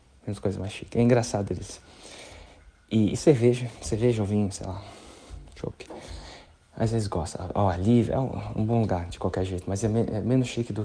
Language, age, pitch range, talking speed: Portuguese, 20-39, 100-130 Hz, 205 wpm